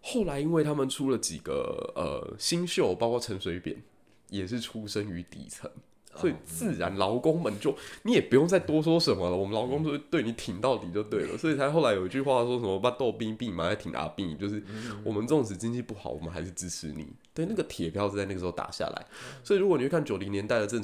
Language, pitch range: Chinese, 90-120 Hz